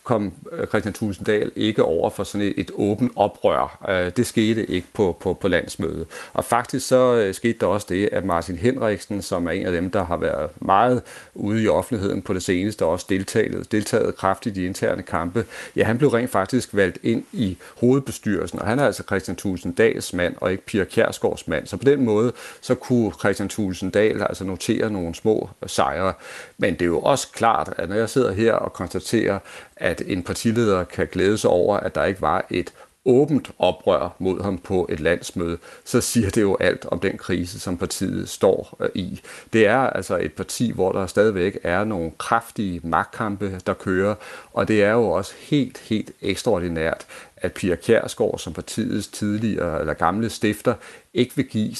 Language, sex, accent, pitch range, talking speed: Danish, male, native, 95-115 Hz, 195 wpm